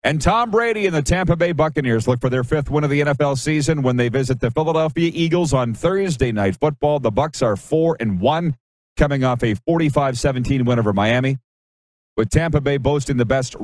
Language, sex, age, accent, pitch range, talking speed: English, male, 40-59, American, 115-145 Hz, 200 wpm